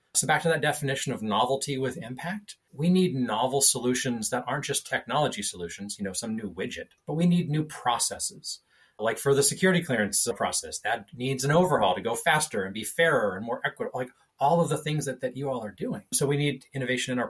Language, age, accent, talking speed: English, 30-49, American, 220 wpm